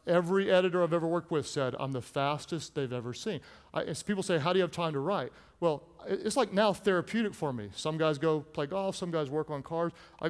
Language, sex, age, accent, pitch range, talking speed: English, male, 40-59, American, 135-185 Hz, 240 wpm